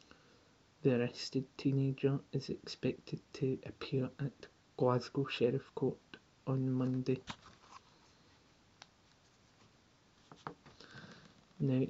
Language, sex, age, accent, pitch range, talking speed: English, male, 30-49, British, 125-140 Hz, 70 wpm